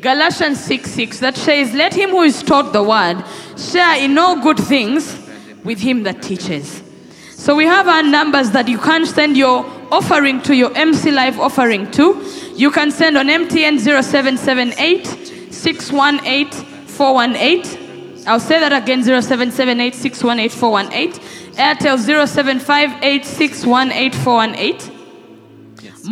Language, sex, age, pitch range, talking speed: English, female, 20-39, 245-300 Hz, 115 wpm